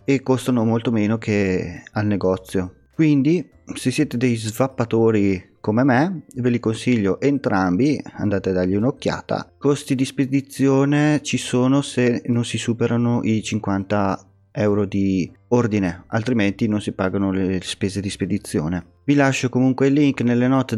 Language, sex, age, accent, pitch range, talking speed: Italian, male, 30-49, native, 100-130 Hz, 145 wpm